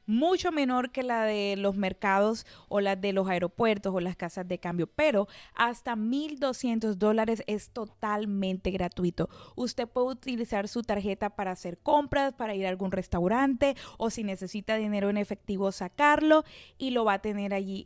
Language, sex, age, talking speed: Spanish, female, 20-39, 170 wpm